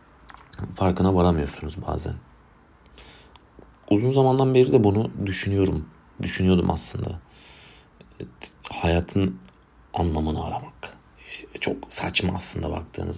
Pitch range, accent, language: 80-95 Hz, native, Turkish